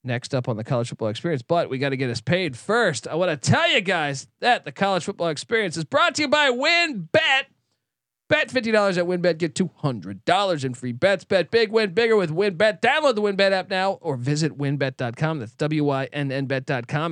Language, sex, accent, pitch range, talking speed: English, male, American, 135-205 Hz, 200 wpm